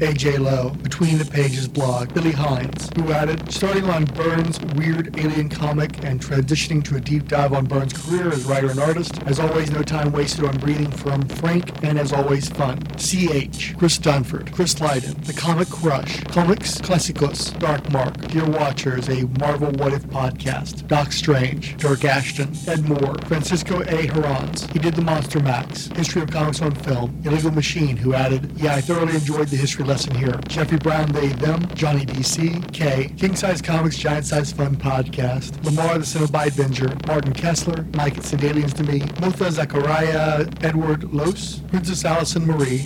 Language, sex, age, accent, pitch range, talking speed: English, male, 40-59, American, 145-165 Hz, 175 wpm